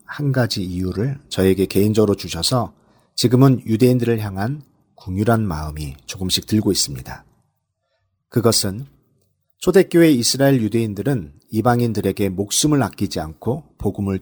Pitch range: 95-130 Hz